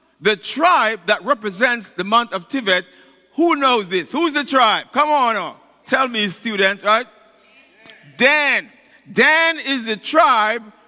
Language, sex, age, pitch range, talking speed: English, male, 50-69, 200-290 Hz, 145 wpm